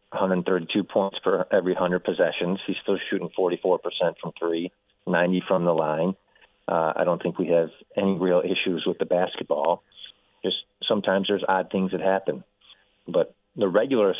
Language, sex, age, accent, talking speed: English, male, 30-49, American, 160 wpm